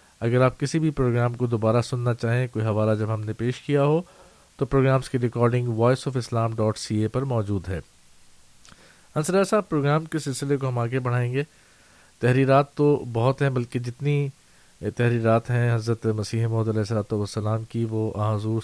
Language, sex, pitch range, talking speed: Urdu, male, 115-135 Hz, 185 wpm